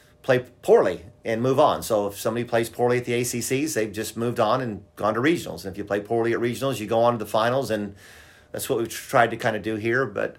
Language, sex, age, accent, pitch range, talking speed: English, male, 30-49, American, 100-120 Hz, 260 wpm